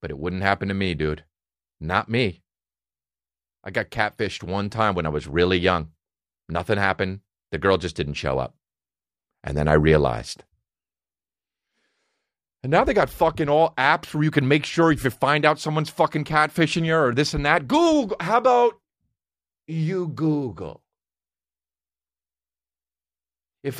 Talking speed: 155 wpm